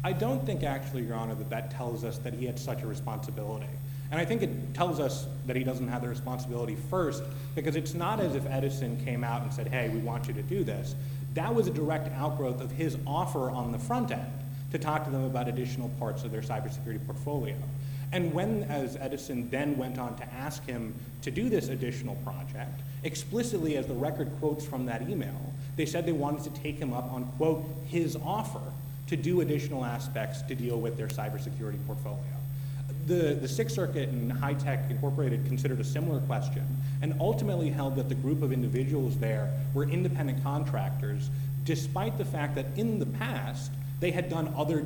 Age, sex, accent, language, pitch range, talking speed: 30-49, male, American, English, 130-145 Hz, 200 wpm